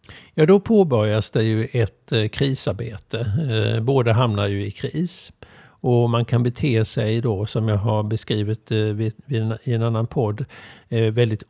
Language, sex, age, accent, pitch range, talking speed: Swedish, male, 50-69, native, 110-130 Hz, 140 wpm